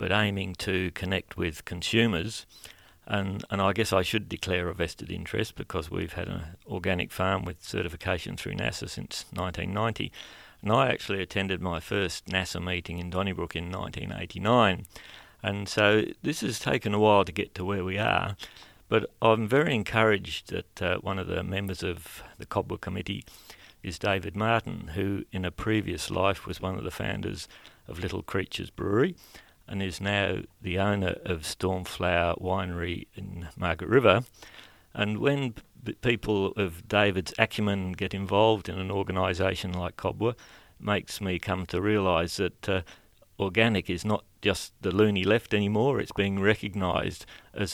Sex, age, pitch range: male, 50-69, 90-110 Hz